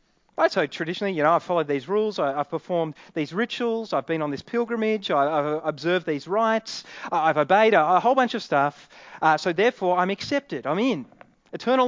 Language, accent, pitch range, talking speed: English, Australian, 175-255 Hz, 185 wpm